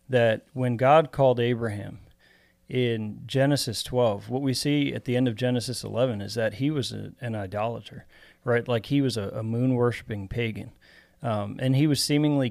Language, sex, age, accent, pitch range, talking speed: English, male, 40-59, American, 110-130 Hz, 175 wpm